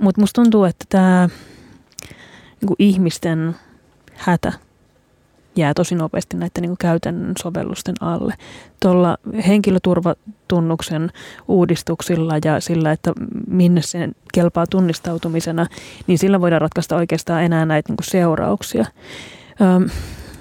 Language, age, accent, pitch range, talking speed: Finnish, 30-49, native, 170-195 Hz, 105 wpm